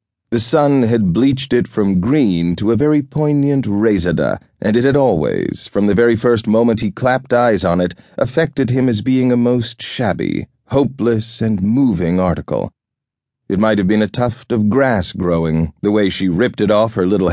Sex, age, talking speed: male, 30-49, 185 wpm